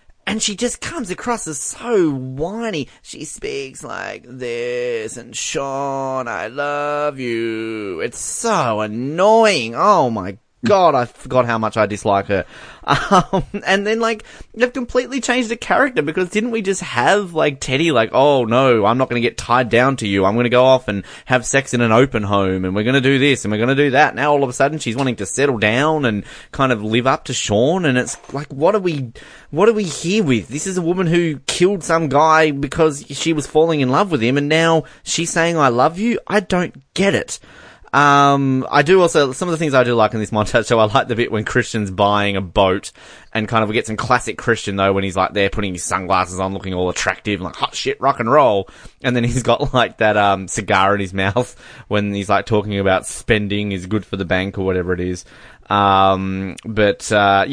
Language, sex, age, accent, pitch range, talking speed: English, male, 20-39, Australian, 100-155 Hz, 225 wpm